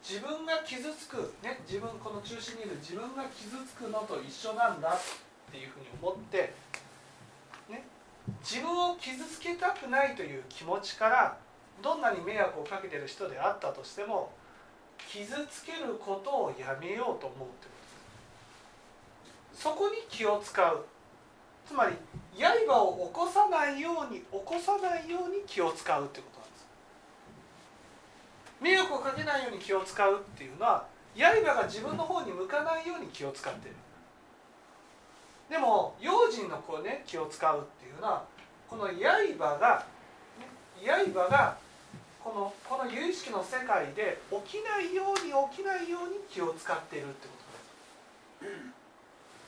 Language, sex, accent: Japanese, male, native